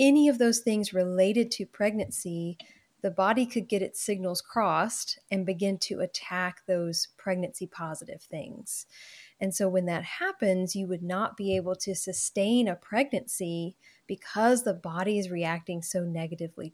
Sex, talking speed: female, 155 wpm